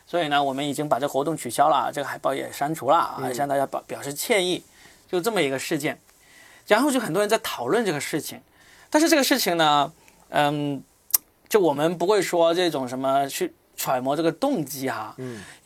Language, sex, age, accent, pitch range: Chinese, male, 20-39, native, 140-200 Hz